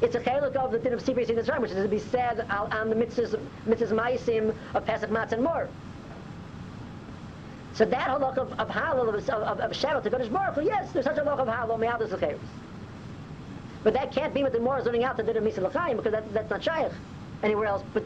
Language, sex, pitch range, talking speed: English, female, 180-235 Hz, 245 wpm